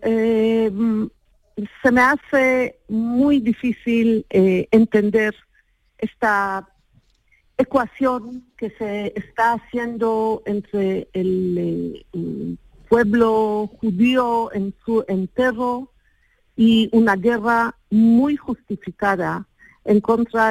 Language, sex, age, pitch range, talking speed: Spanish, female, 50-69, 190-230 Hz, 85 wpm